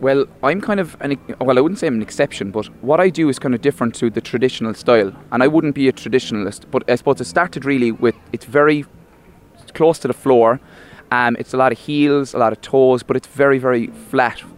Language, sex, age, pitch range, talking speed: English, male, 20-39, 115-140 Hz, 240 wpm